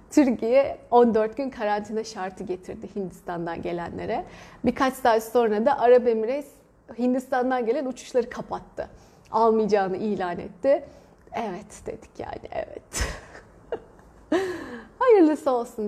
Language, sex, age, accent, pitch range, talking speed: Turkish, female, 30-49, native, 200-245 Hz, 105 wpm